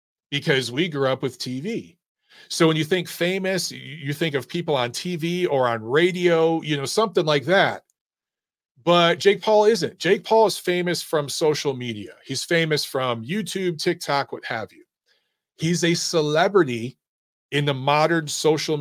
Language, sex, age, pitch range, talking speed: English, male, 40-59, 140-180 Hz, 165 wpm